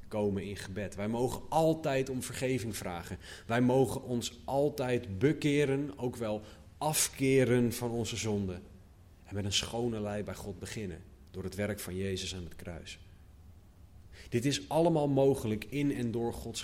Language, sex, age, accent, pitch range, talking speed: Dutch, male, 30-49, Dutch, 95-120 Hz, 160 wpm